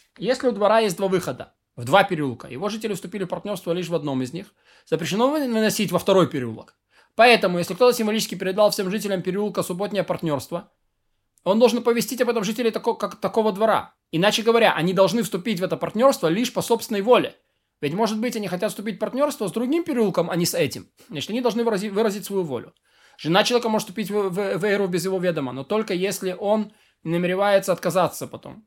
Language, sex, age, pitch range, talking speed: Russian, male, 20-39, 175-220 Hz, 195 wpm